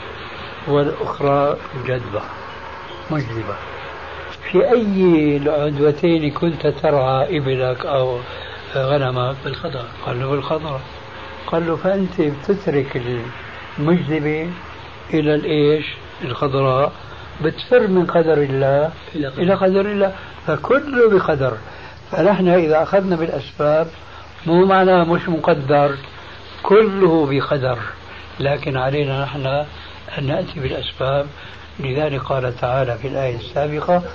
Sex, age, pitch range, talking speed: male, 60-79, 130-160 Hz, 95 wpm